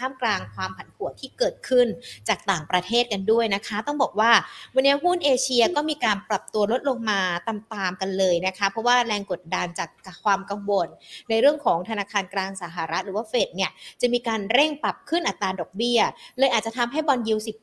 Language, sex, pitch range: Thai, female, 195-260 Hz